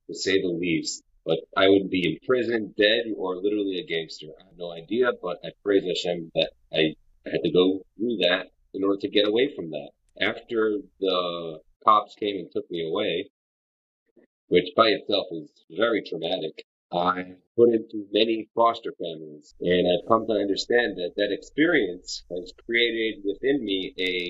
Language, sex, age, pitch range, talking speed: English, male, 30-49, 90-125 Hz, 175 wpm